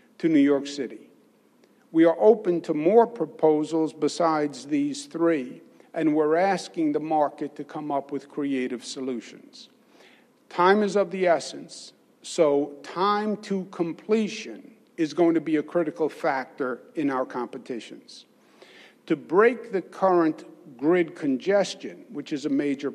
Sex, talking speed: male, 140 wpm